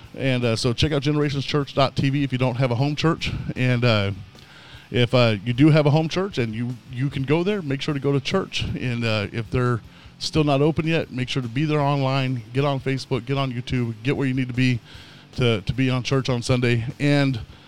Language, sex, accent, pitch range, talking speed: English, male, American, 125-155 Hz, 235 wpm